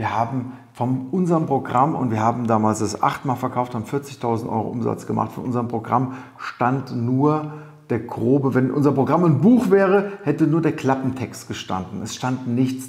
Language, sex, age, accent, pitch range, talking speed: German, male, 40-59, German, 115-150 Hz, 175 wpm